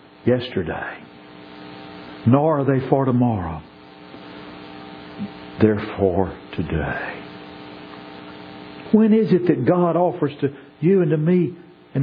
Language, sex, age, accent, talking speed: English, male, 60-79, American, 105 wpm